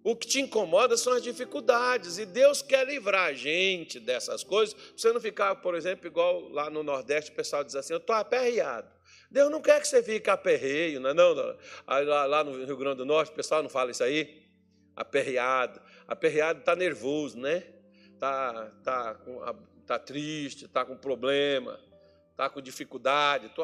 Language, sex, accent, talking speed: Portuguese, male, Brazilian, 180 wpm